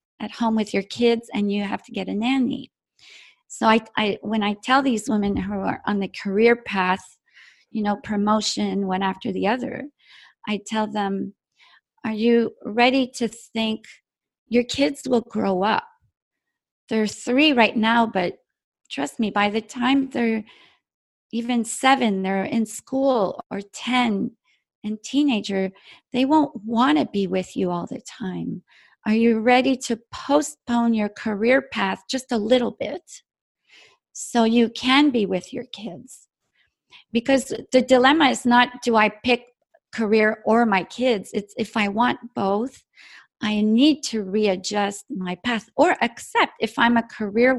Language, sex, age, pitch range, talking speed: English, female, 40-59, 210-255 Hz, 155 wpm